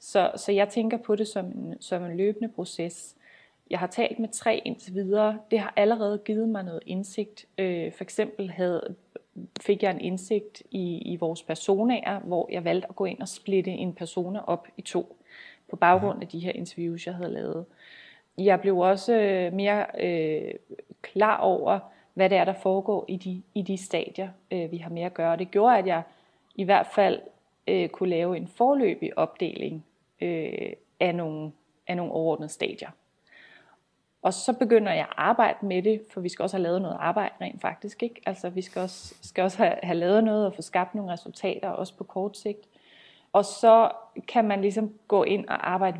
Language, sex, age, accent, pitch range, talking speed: Danish, female, 30-49, native, 175-210 Hz, 190 wpm